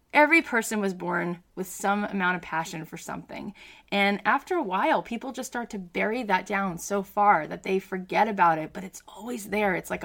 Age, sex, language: 20-39, female, English